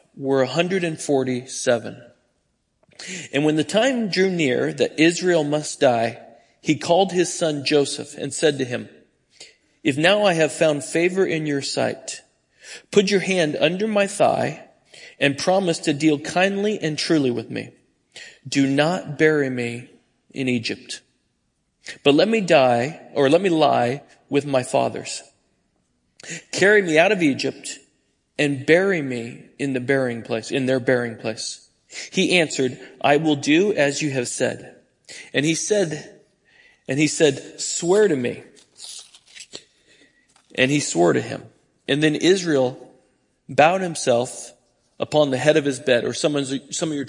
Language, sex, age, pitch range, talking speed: English, male, 40-59, 130-170 Hz, 150 wpm